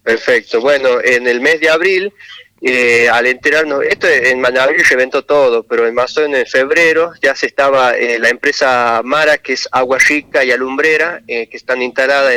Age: 30-49